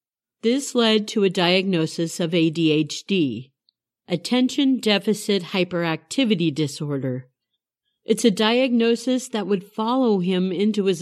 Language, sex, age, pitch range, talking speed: English, female, 50-69, 170-240 Hz, 110 wpm